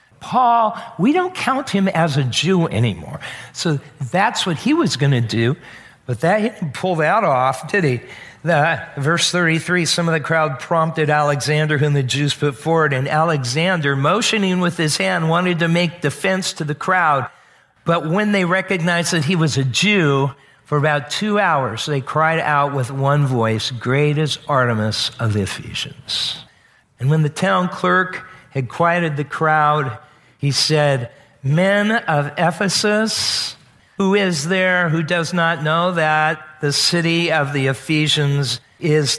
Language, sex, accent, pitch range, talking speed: English, male, American, 140-180 Hz, 160 wpm